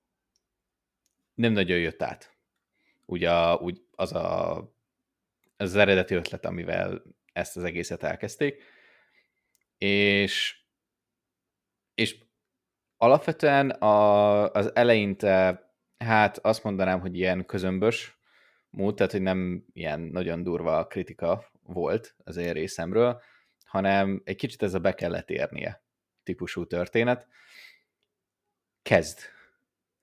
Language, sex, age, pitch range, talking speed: Hungarian, male, 20-39, 90-110 Hz, 100 wpm